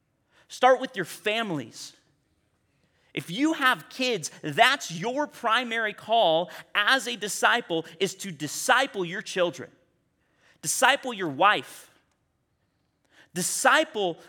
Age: 30-49